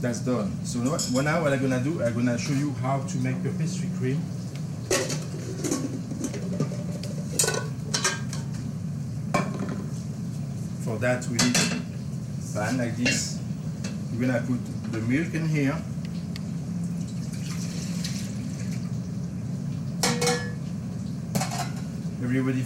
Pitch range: 125-170 Hz